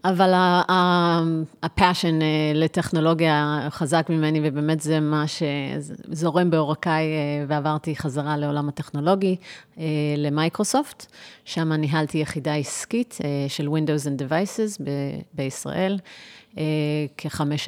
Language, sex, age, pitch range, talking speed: Hebrew, female, 30-49, 150-175 Hz, 90 wpm